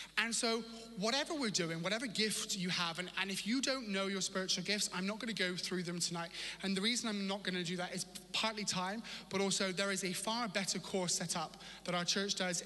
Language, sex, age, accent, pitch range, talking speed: English, male, 30-49, British, 175-205 Hz, 235 wpm